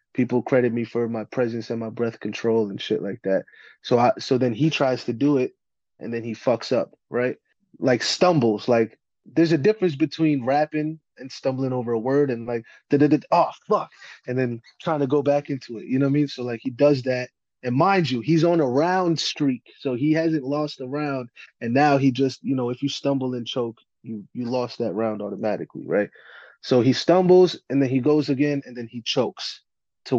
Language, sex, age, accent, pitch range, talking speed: English, male, 20-39, American, 115-140 Hz, 215 wpm